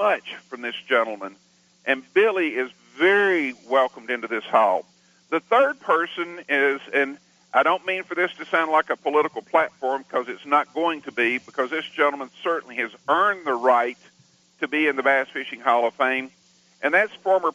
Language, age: English, 50-69